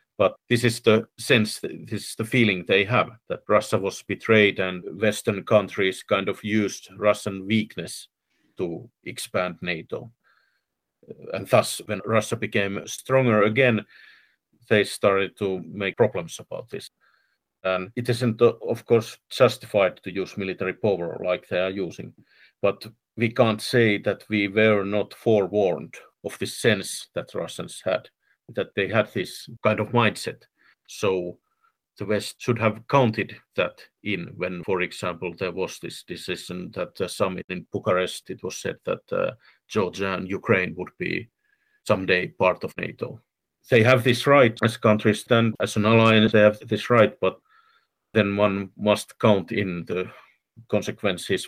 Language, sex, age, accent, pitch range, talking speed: Finnish, male, 50-69, native, 95-115 Hz, 155 wpm